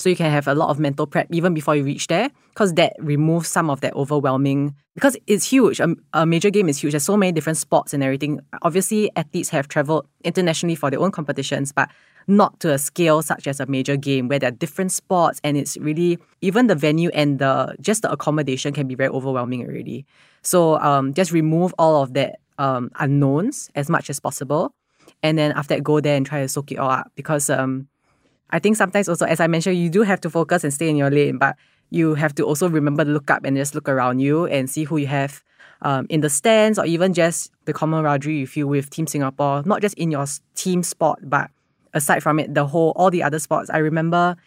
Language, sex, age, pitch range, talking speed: English, female, 20-39, 145-180 Hz, 235 wpm